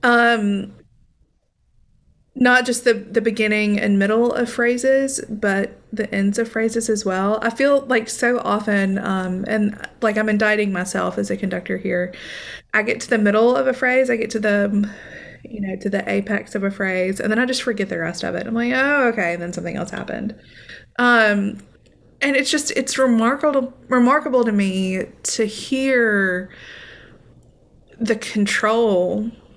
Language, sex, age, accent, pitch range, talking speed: English, female, 20-39, American, 195-235 Hz, 170 wpm